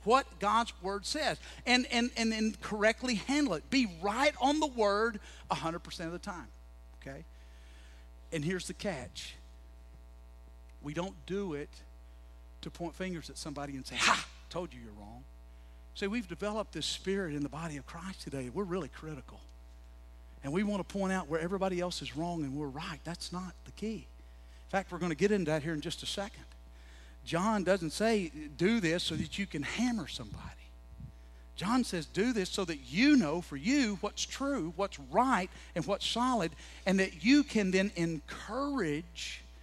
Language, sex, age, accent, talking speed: English, male, 50-69, American, 180 wpm